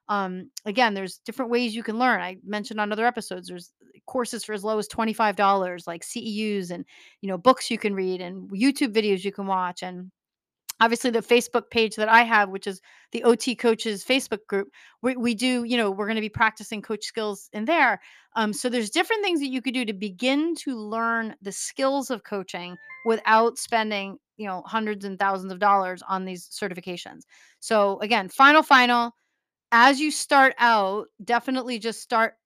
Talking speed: 190 wpm